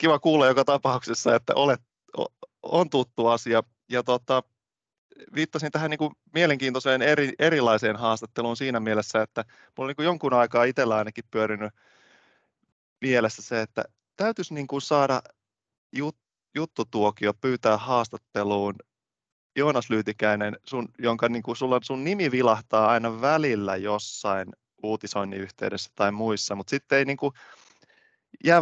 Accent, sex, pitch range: native, male, 105-135 Hz